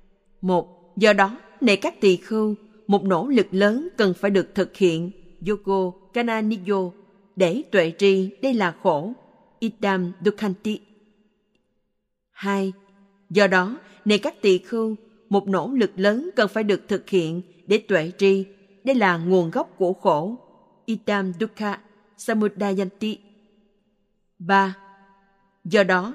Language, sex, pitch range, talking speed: Vietnamese, female, 190-215 Hz, 130 wpm